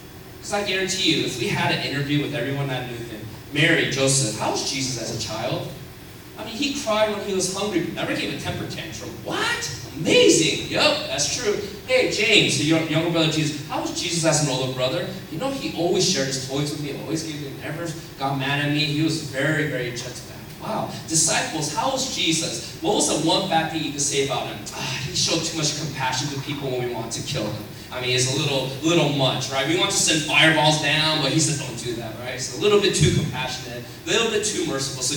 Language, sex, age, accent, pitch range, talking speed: English, male, 20-39, American, 130-170 Hz, 240 wpm